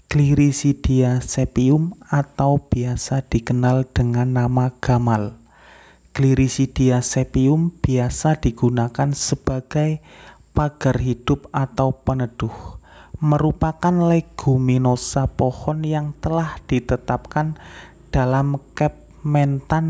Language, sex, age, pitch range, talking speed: Indonesian, male, 30-49, 120-150 Hz, 75 wpm